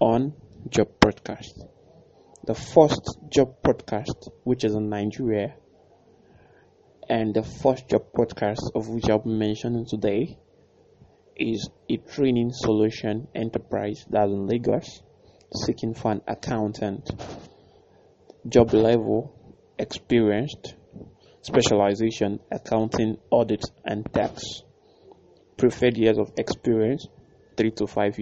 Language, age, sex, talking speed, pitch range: English, 20-39, male, 105 wpm, 110-125 Hz